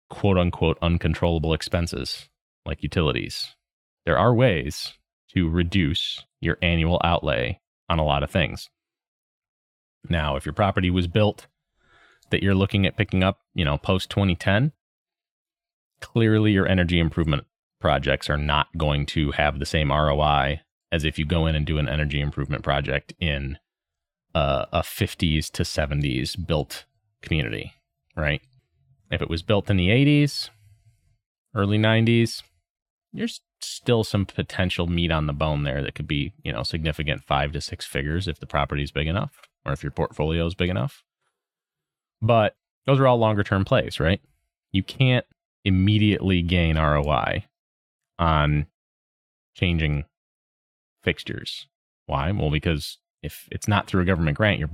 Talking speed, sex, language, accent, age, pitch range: 150 wpm, male, English, American, 30-49, 75-100 Hz